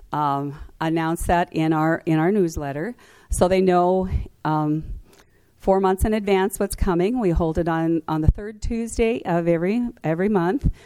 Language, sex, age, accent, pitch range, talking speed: English, female, 50-69, American, 150-185 Hz, 165 wpm